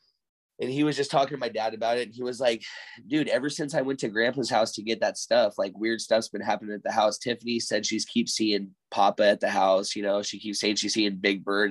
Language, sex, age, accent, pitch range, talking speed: English, male, 20-39, American, 100-120 Hz, 265 wpm